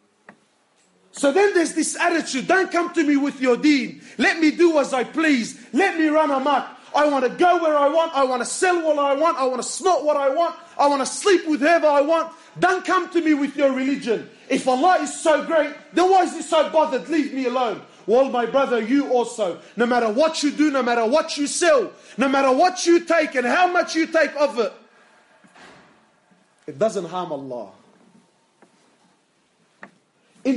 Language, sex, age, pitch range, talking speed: English, male, 30-49, 260-330 Hz, 205 wpm